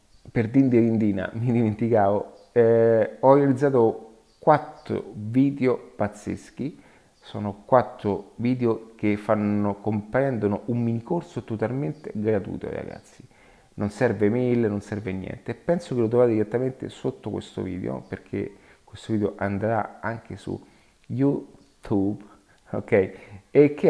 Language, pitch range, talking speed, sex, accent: Italian, 105-120 Hz, 115 wpm, male, native